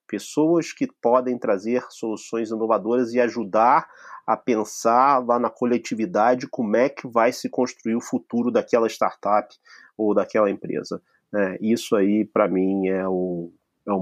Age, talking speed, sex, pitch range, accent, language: 30-49, 140 wpm, male, 105-135 Hz, Brazilian, Portuguese